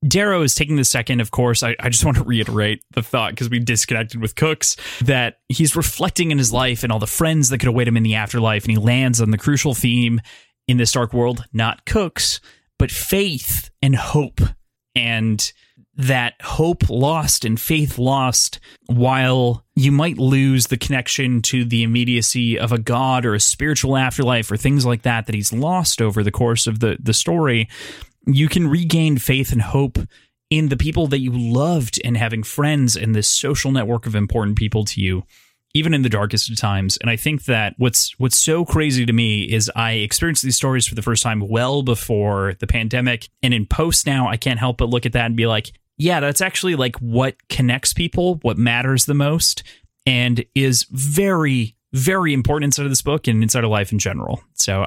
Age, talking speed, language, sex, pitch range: 30-49, 200 wpm, English, male, 115-140 Hz